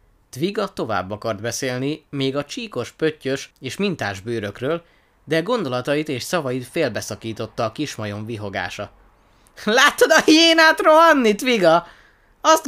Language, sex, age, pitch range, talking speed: Hungarian, male, 20-39, 110-175 Hz, 125 wpm